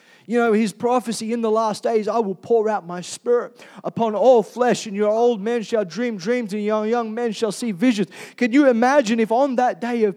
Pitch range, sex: 180-235 Hz, male